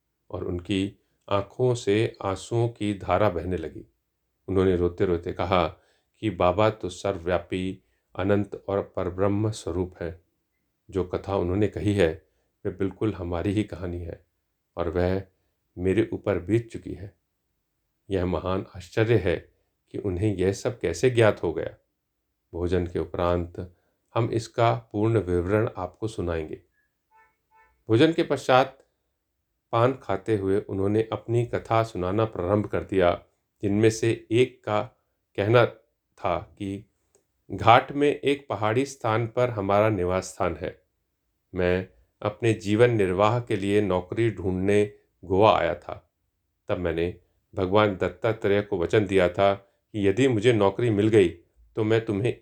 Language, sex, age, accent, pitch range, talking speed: Hindi, male, 40-59, native, 90-110 Hz, 135 wpm